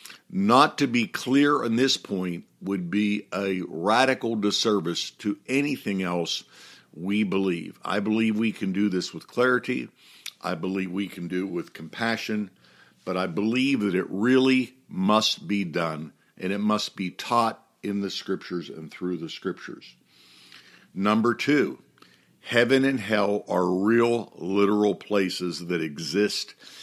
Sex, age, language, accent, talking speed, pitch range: male, 60-79, English, American, 145 wpm, 90-110 Hz